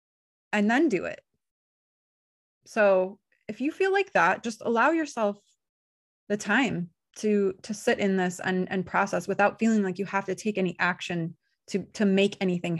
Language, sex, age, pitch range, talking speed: English, female, 20-39, 185-220 Hz, 170 wpm